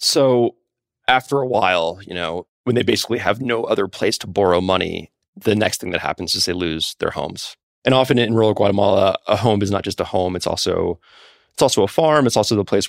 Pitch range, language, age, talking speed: 90-110 Hz, English, 20-39, 225 wpm